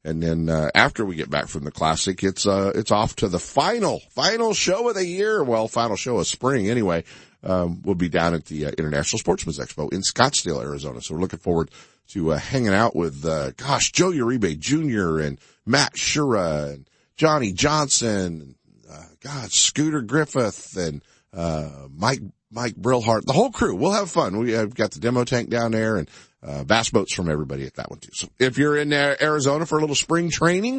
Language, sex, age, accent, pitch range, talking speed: English, male, 50-69, American, 80-125 Hz, 205 wpm